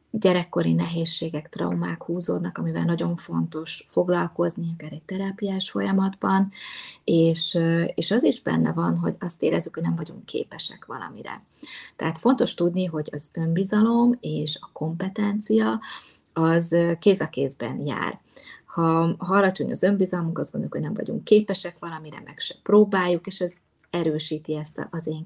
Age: 20-39